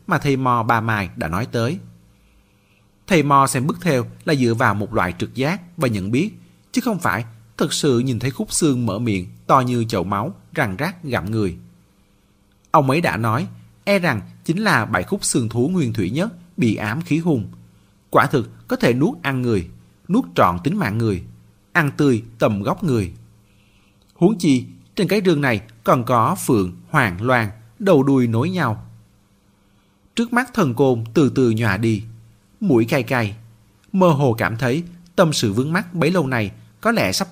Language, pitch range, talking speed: Vietnamese, 105-145 Hz, 190 wpm